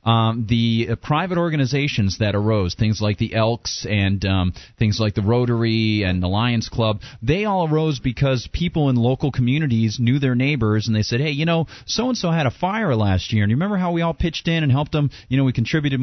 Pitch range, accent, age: 110-140 Hz, American, 30-49